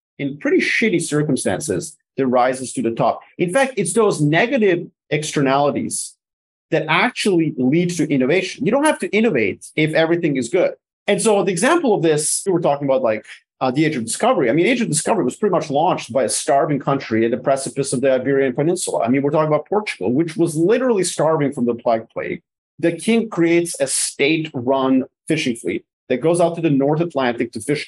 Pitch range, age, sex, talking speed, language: 135-185 Hz, 30-49, male, 205 wpm, English